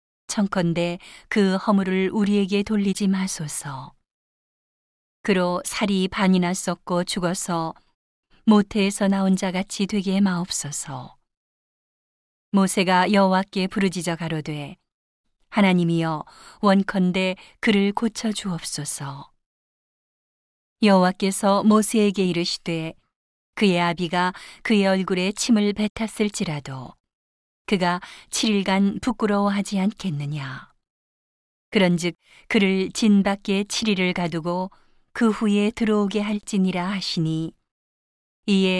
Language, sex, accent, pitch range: Korean, female, native, 175-205 Hz